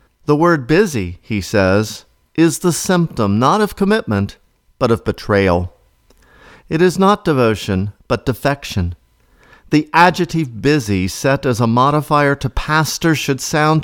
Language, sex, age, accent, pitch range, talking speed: English, male, 50-69, American, 105-140 Hz, 135 wpm